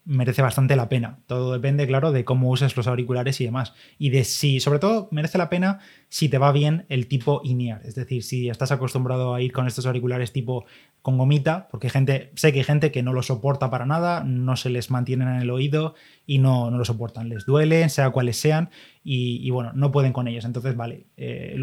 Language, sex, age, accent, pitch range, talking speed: Spanish, male, 20-39, Spanish, 125-145 Hz, 225 wpm